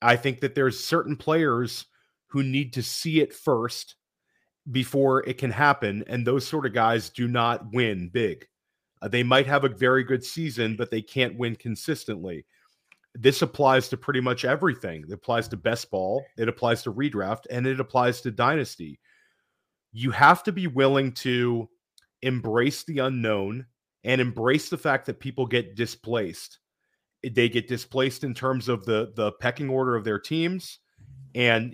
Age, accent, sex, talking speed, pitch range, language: 40-59, American, male, 170 wpm, 115-135 Hz, English